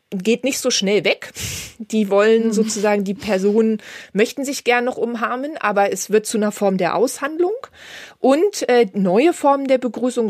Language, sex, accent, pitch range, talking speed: English, female, German, 190-235 Hz, 170 wpm